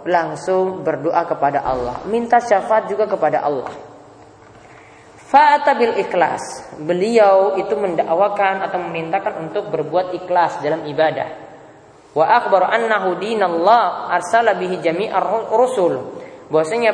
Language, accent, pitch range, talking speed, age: Indonesian, native, 155-215 Hz, 80 wpm, 20-39